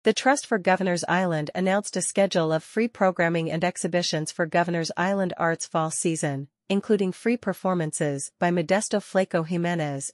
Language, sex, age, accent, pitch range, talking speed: English, female, 40-59, American, 165-195 Hz, 155 wpm